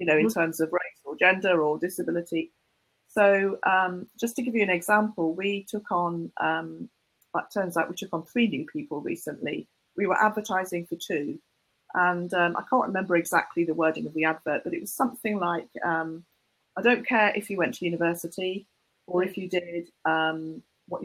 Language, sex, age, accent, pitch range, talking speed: English, female, 40-59, British, 170-220 Hz, 190 wpm